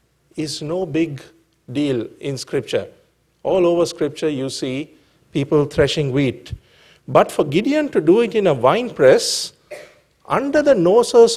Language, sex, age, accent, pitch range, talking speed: English, male, 50-69, Indian, 145-195 Hz, 145 wpm